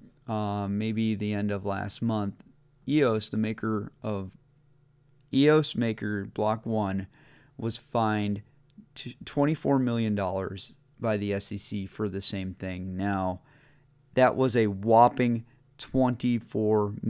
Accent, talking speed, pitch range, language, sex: American, 110 wpm, 105-140 Hz, English, male